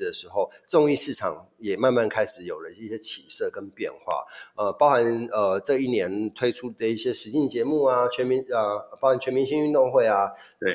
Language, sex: Chinese, male